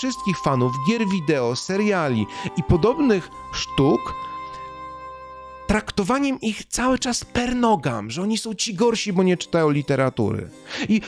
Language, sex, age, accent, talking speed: Polish, male, 40-59, native, 125 wpm